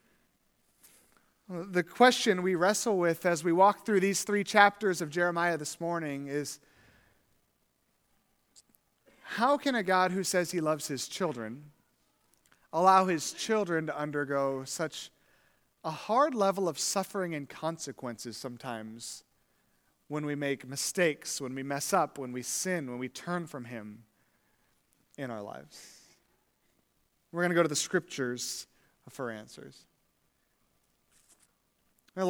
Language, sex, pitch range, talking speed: English, male, 155-215 Hz, 130 wpm